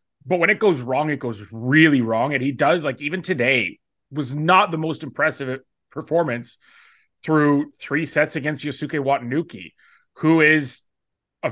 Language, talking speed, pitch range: English, 155 wpm, 130-160 Hz